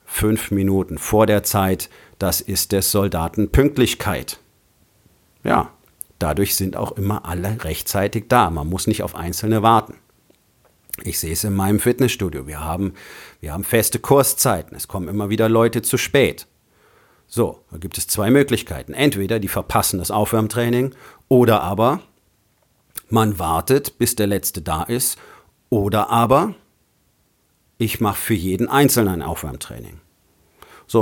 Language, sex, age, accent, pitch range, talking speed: German, male, 50-69, German, 95-115 Hz, 140 wpm